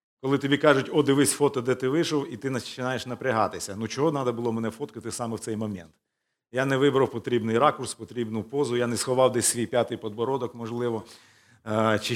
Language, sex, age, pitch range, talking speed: Ukrainian, male, 40-59, 115-145 Hz, 190 wpm